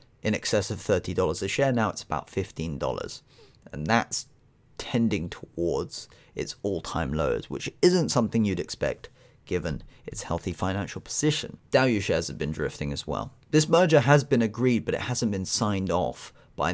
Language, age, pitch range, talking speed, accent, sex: English, 30-49, 90-125 Hz, 165 wpm, British, male